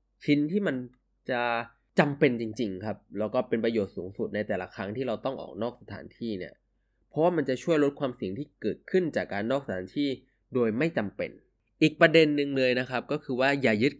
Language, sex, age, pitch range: Thai, male, 20-39, 110-145 Hz